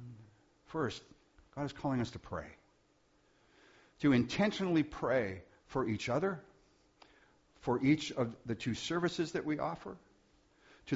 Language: English